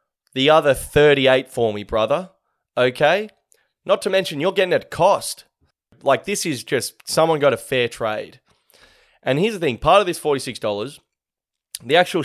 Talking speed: 160 wpm